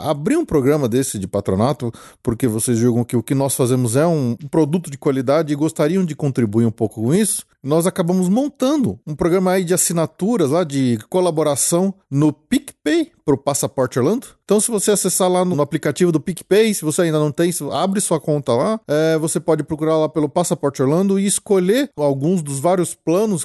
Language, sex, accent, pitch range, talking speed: Portuguese, male, Brazilian, 135-190 Hz, 195 wpm